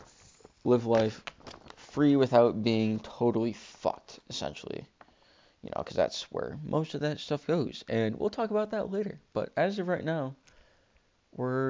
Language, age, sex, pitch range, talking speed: English, 20-39, male, 110-145 Hz, 155 wpm